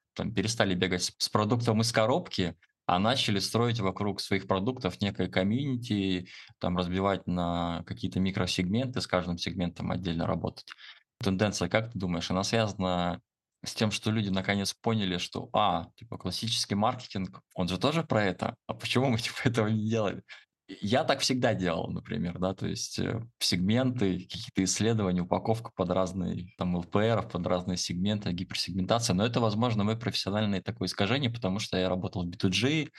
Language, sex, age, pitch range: Russian, male, 20-39, 90-110 Hz